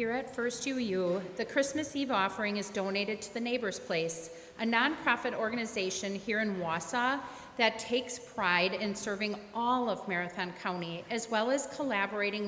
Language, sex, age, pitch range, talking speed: English, female, 40-59, 190-240 Hz, 160 wpm